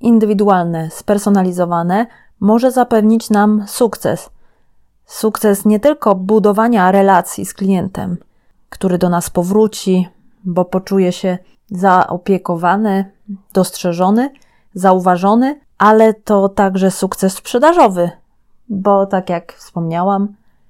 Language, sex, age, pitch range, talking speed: English, female, 30-49, 185-215 Hz, 95 wpm